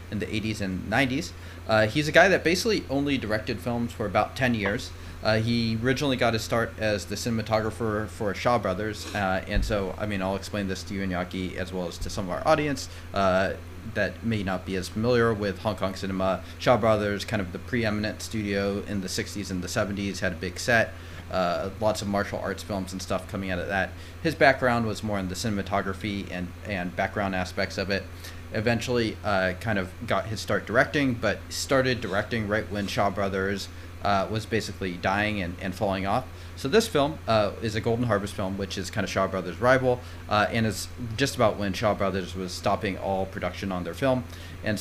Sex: male